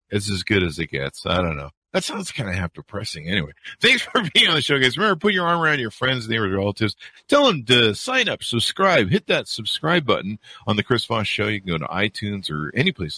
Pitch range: 90-130 Hz